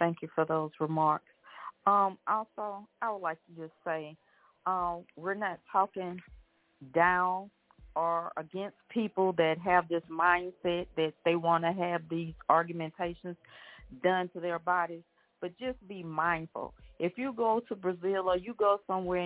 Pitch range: 165-195 Hz